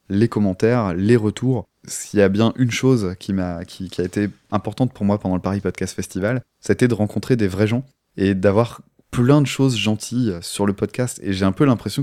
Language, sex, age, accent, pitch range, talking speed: French, male, 20-39, French, 95-120 Hz, 220 wpm